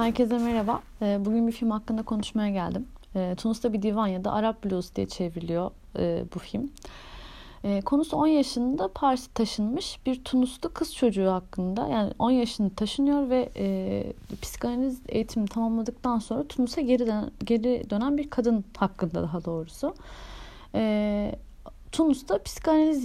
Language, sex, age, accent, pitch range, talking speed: Turkish, female, 30-49, native, 185-240 Hz, 135 wpm